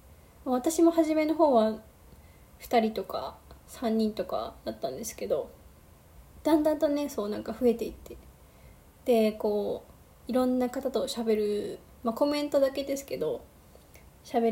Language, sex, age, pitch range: Japanese, female, 20-39, 220-290 Hz